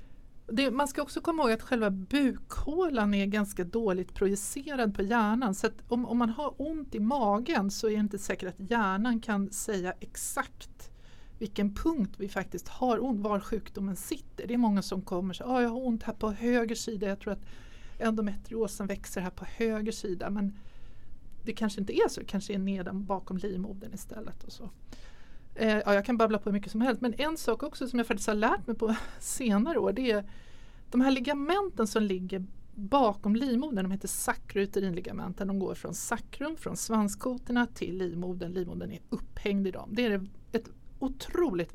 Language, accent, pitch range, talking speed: Swedish, native, 195-240 Hz, 190 wpm